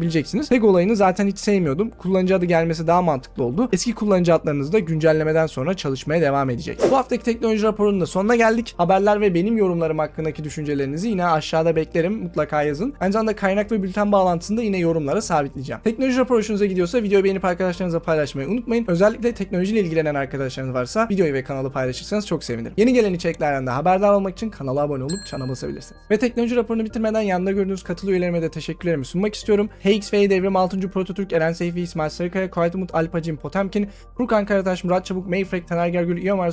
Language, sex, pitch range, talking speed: Turkish, male, 160-205 Hz, 175 wpm